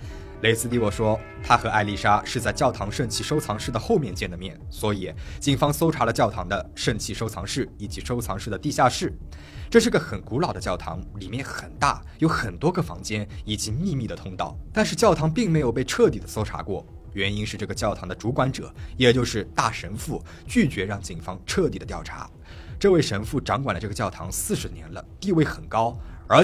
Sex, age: male, 20-39